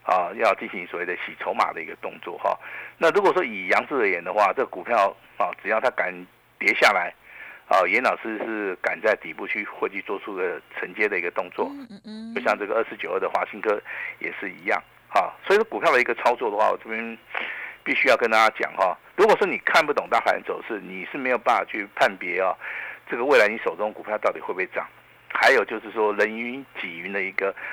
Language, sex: Chinese, male